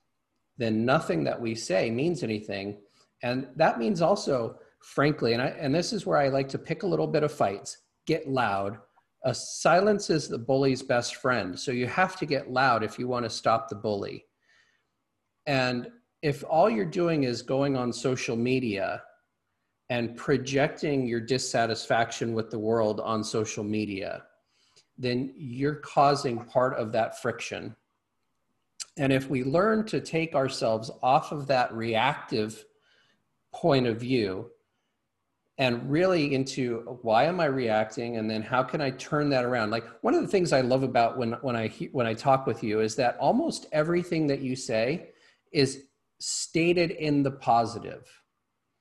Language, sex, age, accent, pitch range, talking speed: English, male, 40-59, American, 115-145 Hz, 160 wpm